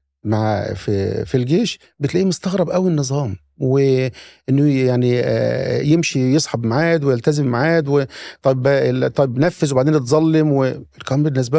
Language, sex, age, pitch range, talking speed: Arabic, male, 50-69, 110-165 Hz, 115 wpm